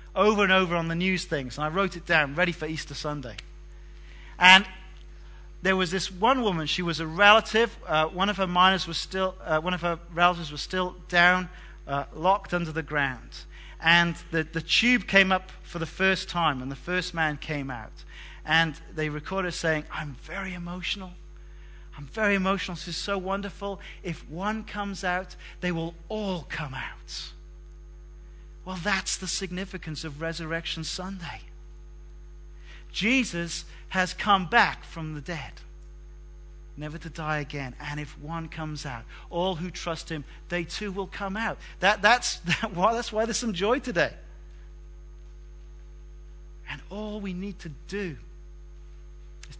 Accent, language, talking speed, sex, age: British, English, 160 wpm, male, 40-59